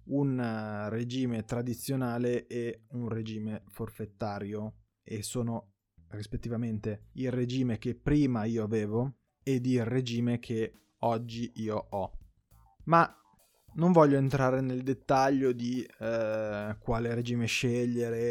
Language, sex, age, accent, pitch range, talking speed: Italian, male, 20-39, native, 105-130 Hz, 110 wpm